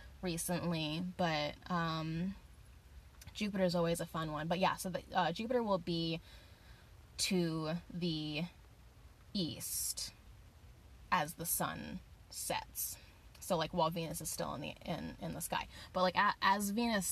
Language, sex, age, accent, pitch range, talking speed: English, female, 10-29, American, 155-195 Hz, 145 wpm